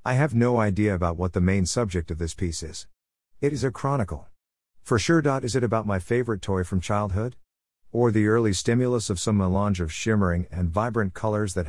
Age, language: 50-69, English